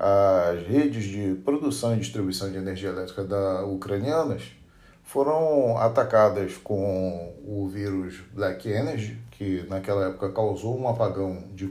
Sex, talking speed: male, 125 wpm